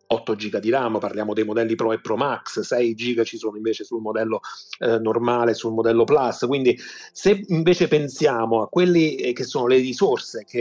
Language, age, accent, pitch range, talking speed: Italian, 30-49, native, 115-145 Hz, 190 wpm